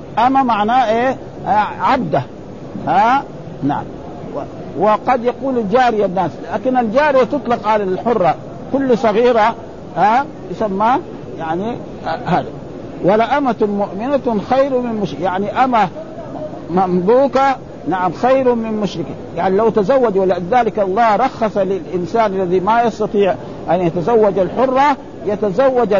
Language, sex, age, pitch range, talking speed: Arabic, male, 50-69, 195-265 Hz, 110 wpm